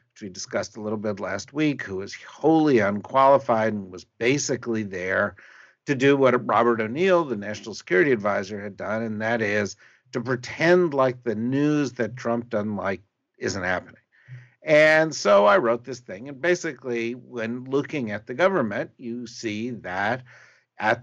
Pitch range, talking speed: 105-135 Hz, 165 wpm